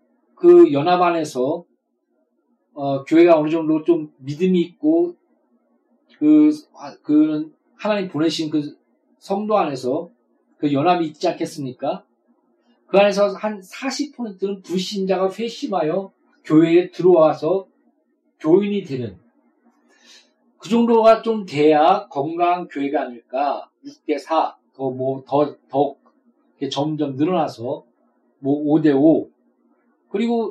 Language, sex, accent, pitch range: Korean, male, native, 150-230 Hz